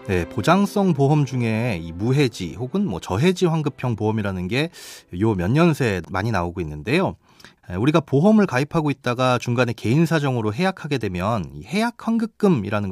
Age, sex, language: 30-49, male, Korean